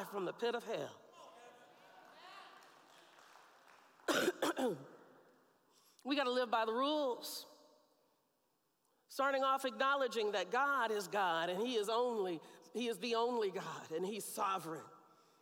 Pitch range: 250-305 Hz